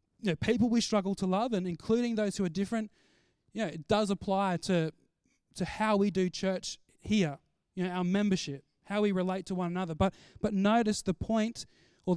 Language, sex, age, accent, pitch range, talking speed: English, male, 20-39, Australian, 175-210 Hz, 200 wpm